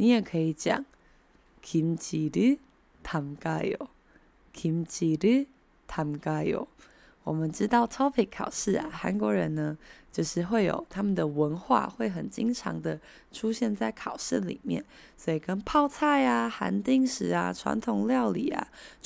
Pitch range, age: 155-250 Hz, 20-39